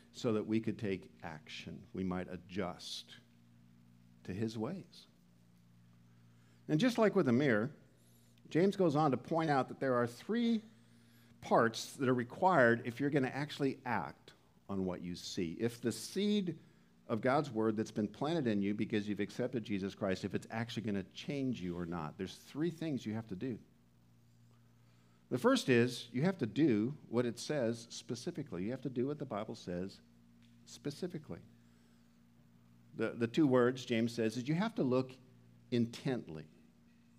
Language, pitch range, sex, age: English, 90-140 Hz, male, 50-69